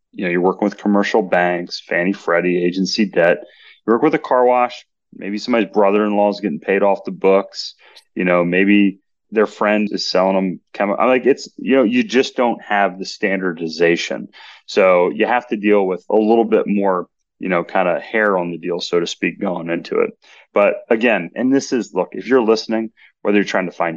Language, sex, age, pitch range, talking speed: English, male, 30-49, 95-125 Hz, 210 wpm